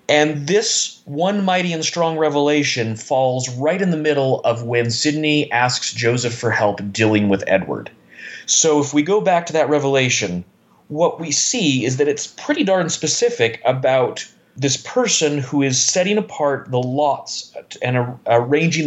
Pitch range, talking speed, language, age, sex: 120-155 Hz, 160 wpm, English, 30-49, male